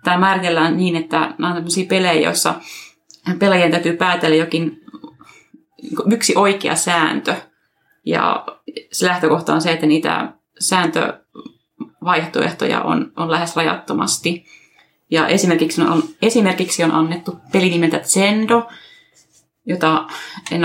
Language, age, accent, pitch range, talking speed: Finnish, 30-49, native, 160-190 Hz, 110 wpm